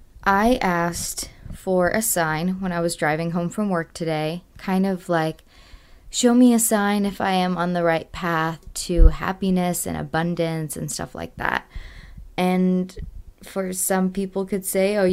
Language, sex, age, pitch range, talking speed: English, female, 20-39, 160-195 Hz, 165 wpm